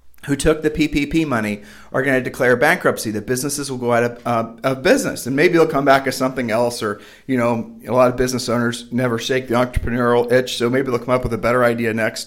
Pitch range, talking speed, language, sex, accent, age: 125-155 Hz, 245 wpm, English, male, American, 40-59